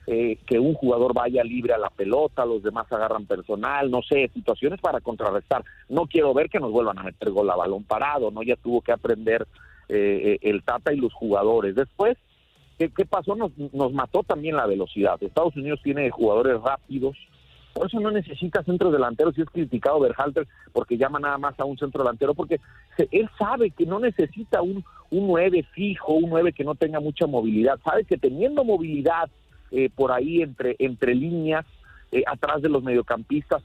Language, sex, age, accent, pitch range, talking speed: Spanish, male, 50-69, Mexican, 125-195 Hz, 190 wpm